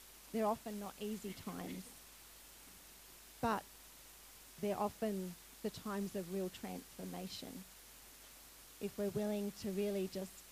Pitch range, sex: 190-215 Hz, female